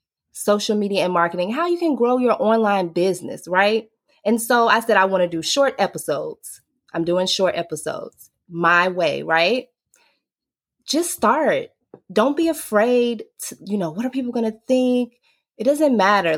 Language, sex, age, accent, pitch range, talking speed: English, female, 20-39, American, 170-245 Hz, 170 wpm